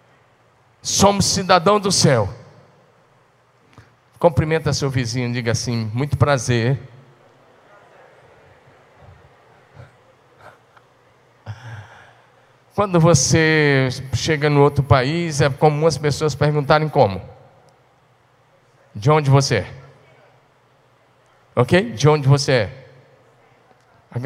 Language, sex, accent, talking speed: Portuguese, male, Brazilian, 80 wpm